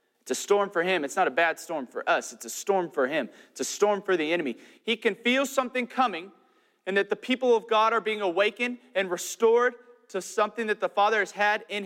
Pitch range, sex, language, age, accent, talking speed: 145-230 Hz, male, English, 30-49, American, 240 wpm